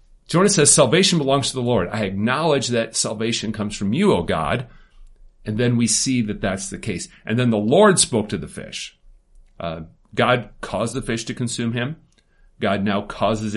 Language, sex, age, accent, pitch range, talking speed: English, male, 40-59, American, 100-145 Hz, 190 wpm